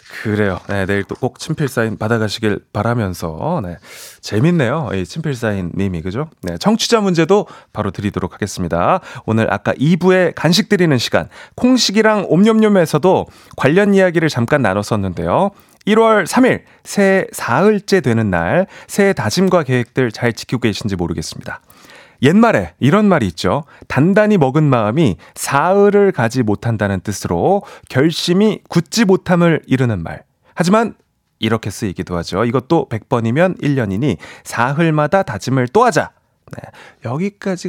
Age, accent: 30-49, native